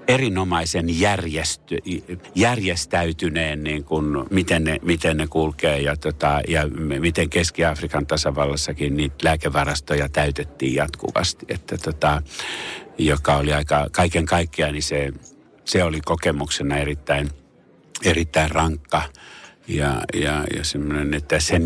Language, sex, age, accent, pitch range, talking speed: Finnish, male, 60-79, native, 70-80 Hz, 115 wpm